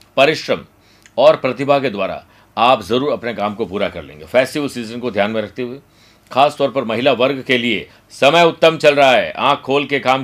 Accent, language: native, Hindi